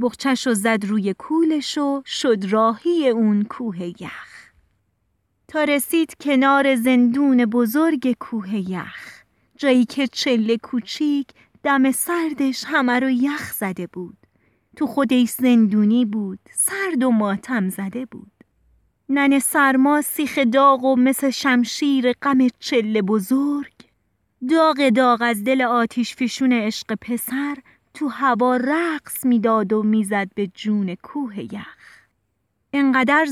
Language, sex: Persian, female